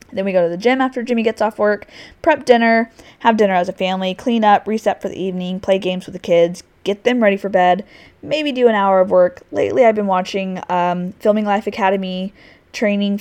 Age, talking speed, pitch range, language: 20-39, 225 wpm, 185-225 Hz, English